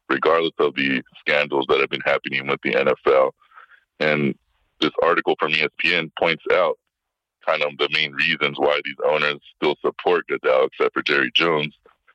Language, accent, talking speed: English, American, 160 wpm